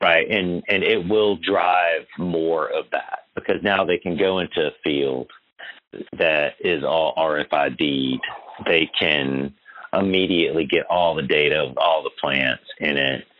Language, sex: English, male